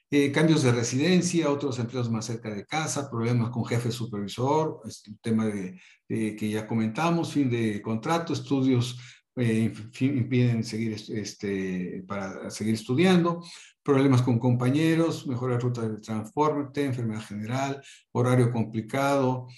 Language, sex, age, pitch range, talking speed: Spanish, male, 50-69, 115-145 Hz, 140 wpm